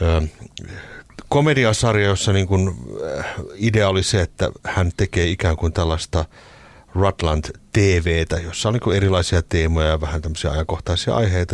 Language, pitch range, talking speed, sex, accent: Finnish, 80-105 Hz, 125 wpm, male, native